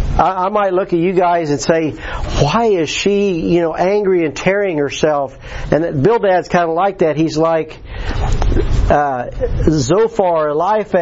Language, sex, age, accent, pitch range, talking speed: English, male, 50-69, American, 155-195 Hz, 165 wpm